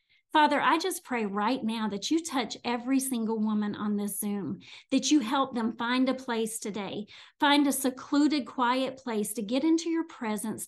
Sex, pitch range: female, 220-260 Hz